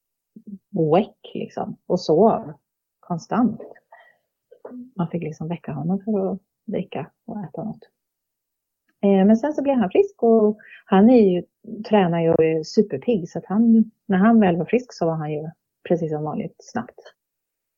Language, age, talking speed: Swedish, 30-49, 150 wpm